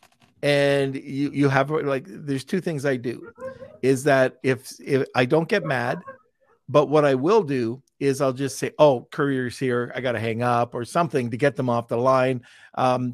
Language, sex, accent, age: English, male, American, 50-69